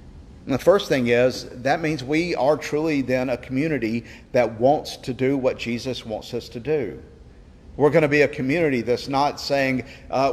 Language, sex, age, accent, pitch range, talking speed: English, male, 50-69, American, 120-150 Hz, 190 wpm